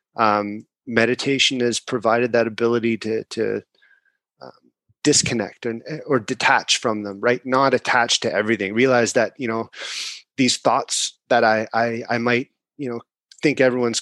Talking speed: 150 wpm